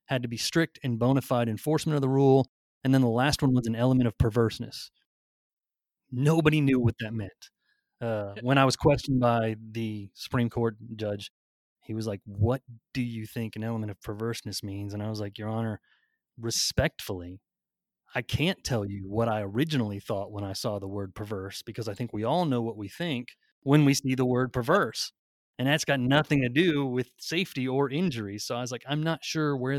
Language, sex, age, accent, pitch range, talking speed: English, male, 30-49, American, 110-135 Hz, 205 wpm